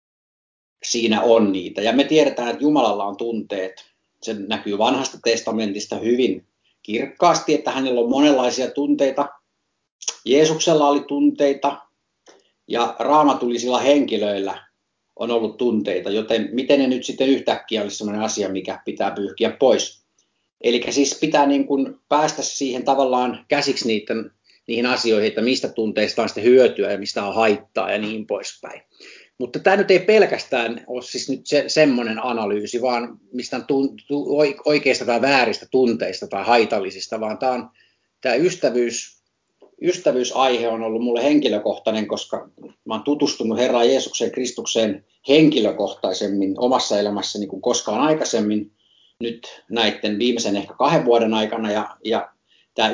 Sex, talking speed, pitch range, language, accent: male, 135 wpm, 110-140 Hz, Finnish, native